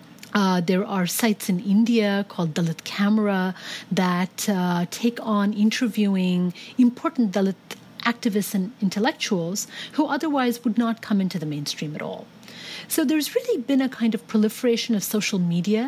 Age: 40-59